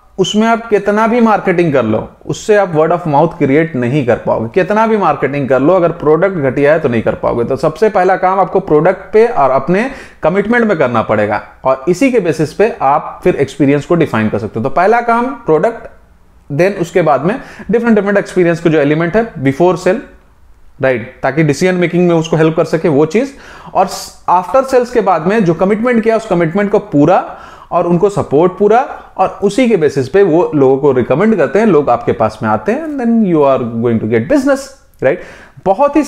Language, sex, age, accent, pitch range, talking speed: Hindi, male, 30-49, native, 140-210 Hz, 215 wpm